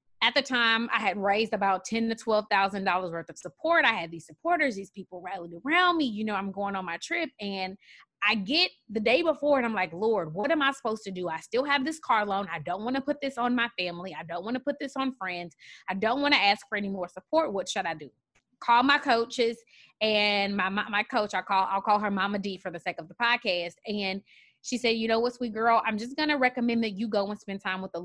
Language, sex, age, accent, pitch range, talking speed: English, female, 20-39, American, 185-245 Hz, 265 wpm